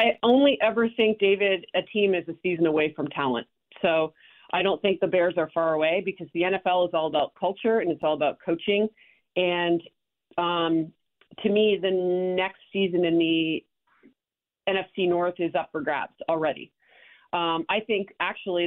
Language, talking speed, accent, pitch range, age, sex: English, 175 wpm, American, 165-215 Hz, 40-59, female